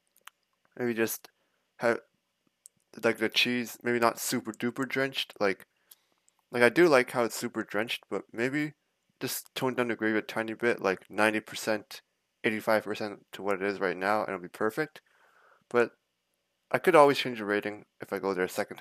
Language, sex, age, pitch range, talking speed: English, male, 20-39, 105-125 Hz, 185 wpm